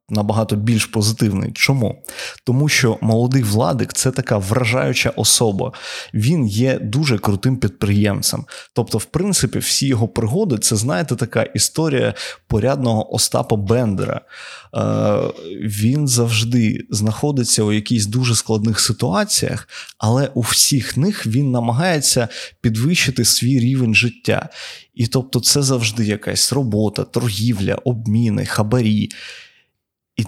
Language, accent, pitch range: Ukrainian, native, 110-130 Hz